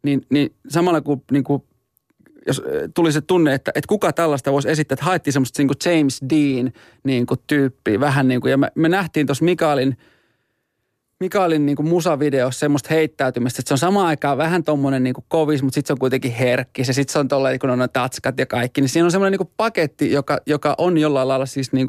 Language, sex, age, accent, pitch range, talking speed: Finnish, male, 30-49, native, 130-150 Hz, 205 wpm